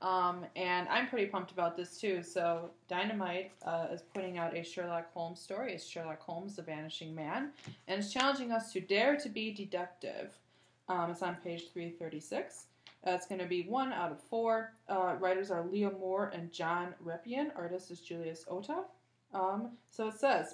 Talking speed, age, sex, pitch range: 185 wpm, 20-39, female, 170-200 Hz